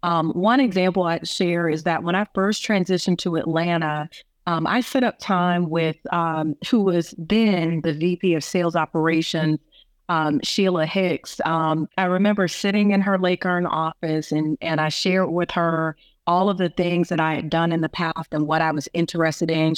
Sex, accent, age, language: female, American, 30-49, English